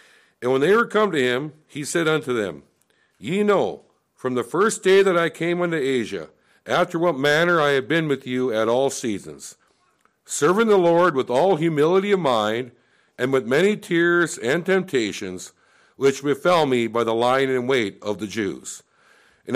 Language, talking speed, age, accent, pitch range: English, 180 wpm, 60-79, American, 130-195 Hz